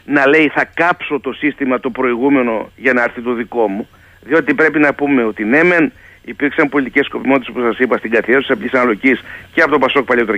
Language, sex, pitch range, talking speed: Greek, male, 105-155 Hz, 210 wpm